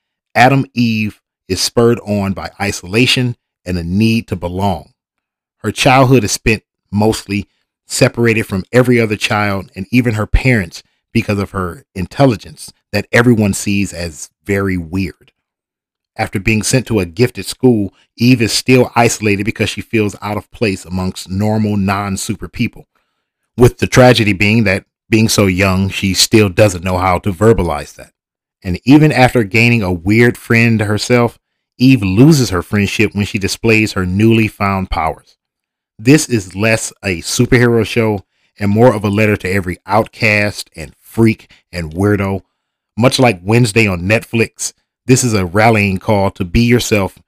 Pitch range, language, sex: 95-115 Hz, English, male